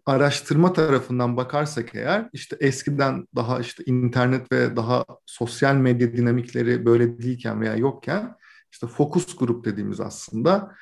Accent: native